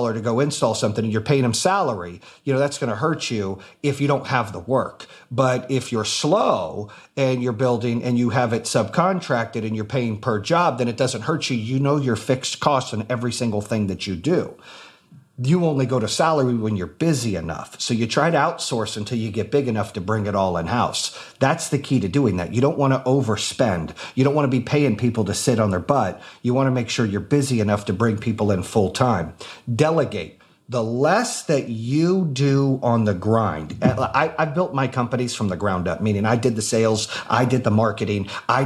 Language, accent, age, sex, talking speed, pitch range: English, American, 40-59, male, 225 wpm, 110-140 Hz